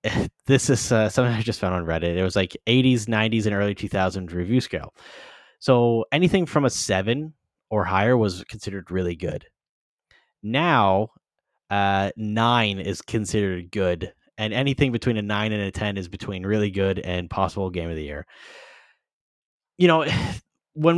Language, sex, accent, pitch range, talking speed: English, male, American, 90-115 Hz, 165 wpm